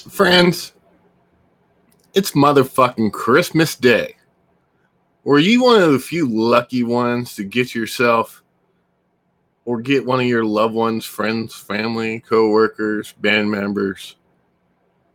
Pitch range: 110-155 Hz